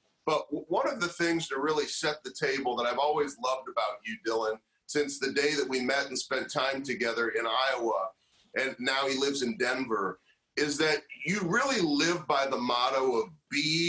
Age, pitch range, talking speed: 40-59, 135-170 Hz, 195 wpm